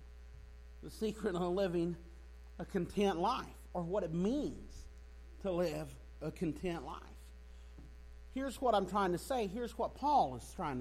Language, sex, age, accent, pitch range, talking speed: English, male, 50-69, American, 200-300 Hz, 150 wpm